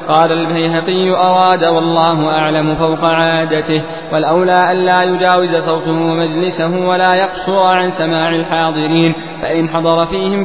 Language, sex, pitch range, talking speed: Arabic, male, 165-190 Hz, 115 wpm